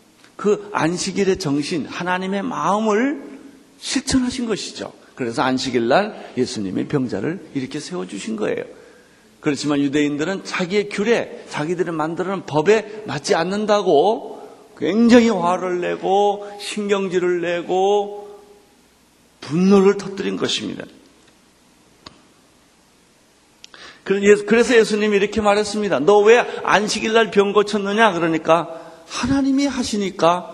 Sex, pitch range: male, 140-210 Hz